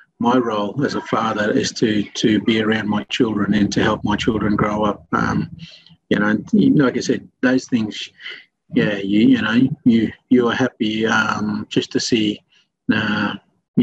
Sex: male